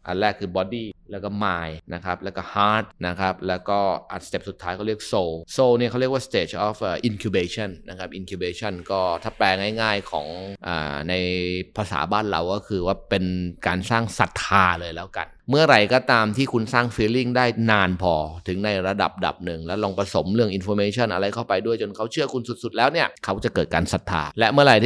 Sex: male